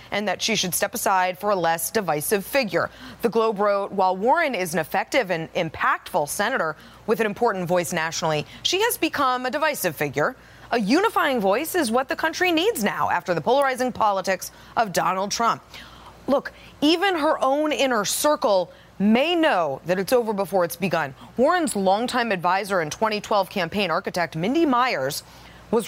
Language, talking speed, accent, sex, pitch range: English, 170 wpm, American, female, 195-265 Hz